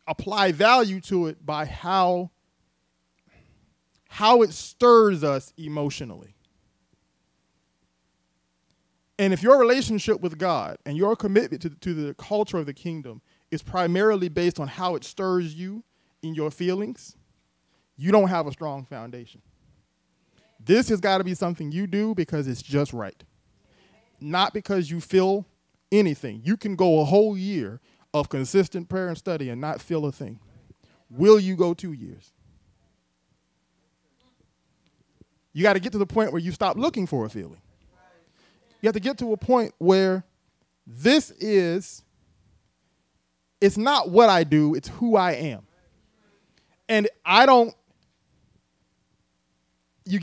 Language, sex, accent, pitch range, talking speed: English, male, American, 140-205 Hz, 140 wpm